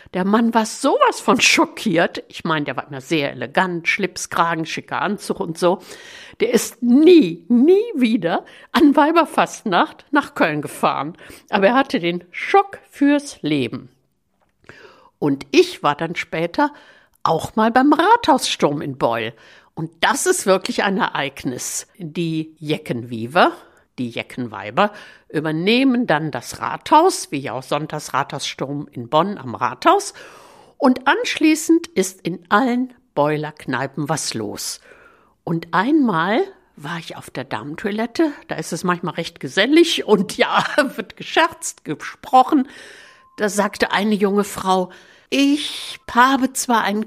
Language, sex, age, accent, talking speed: German, female, 60-79, German, 135 wpm